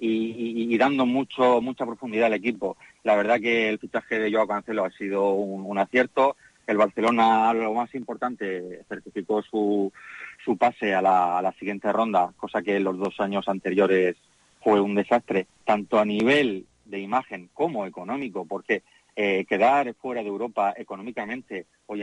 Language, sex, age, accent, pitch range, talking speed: Spanish, male, 30-49, Spanish, 105-140 Hz, 170 wpm